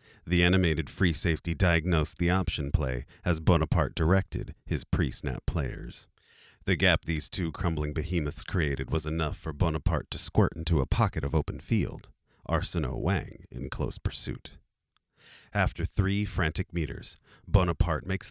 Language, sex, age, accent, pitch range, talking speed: English, male, 40-59, American, 75-90 Hz, 140 wpm